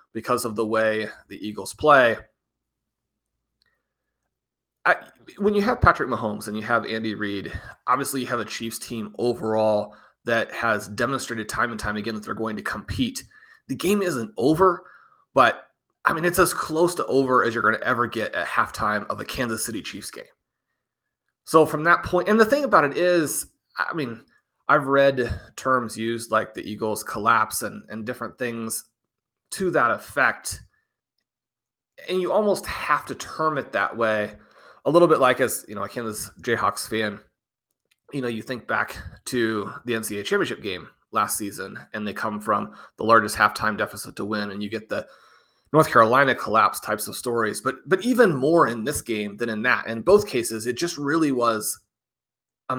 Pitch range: 110-145 Hz